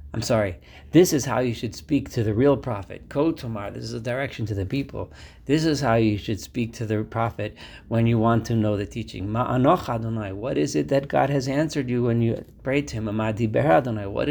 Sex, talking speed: male, 210 wpm